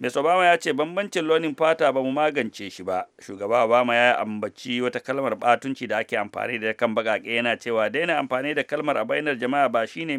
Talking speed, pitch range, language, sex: 195 wpm, 115-135 Hz, English, male